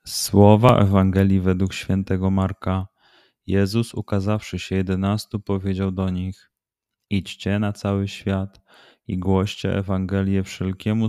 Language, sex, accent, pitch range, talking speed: Polish, male, native, 90-100 Hz, 110 wpm